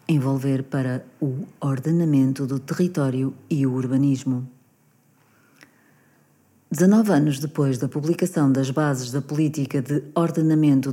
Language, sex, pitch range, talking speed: Portuguese, female, 135-170 Hz, 110 wpm